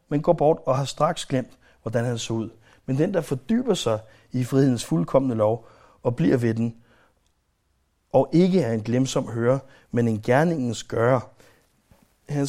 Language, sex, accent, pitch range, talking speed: Danish, male, native, 115-150 Hz, 175 wpm